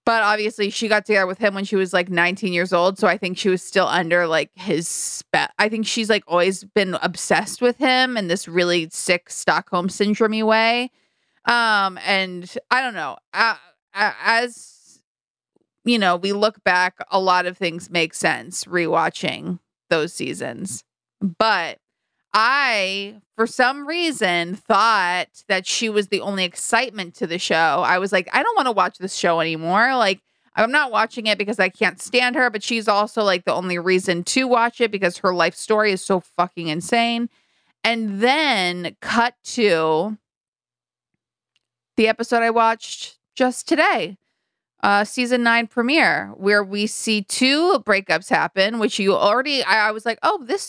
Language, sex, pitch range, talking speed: English, female, 180-230 Hz, 170 wpm